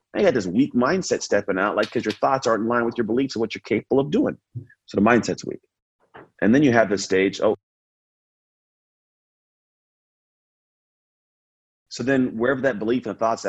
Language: English